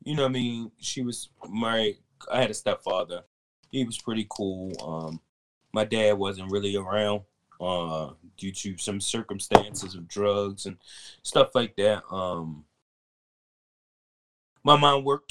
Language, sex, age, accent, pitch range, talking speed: English, male, 20-39, American, 95-115 Hz, 145 wpm